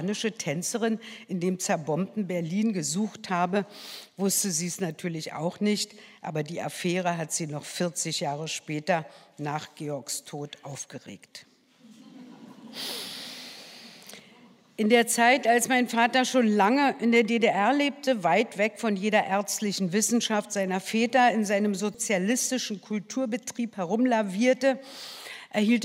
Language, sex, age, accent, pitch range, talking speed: German, female, 60-79, German, 175-225 Hz, 120 wpm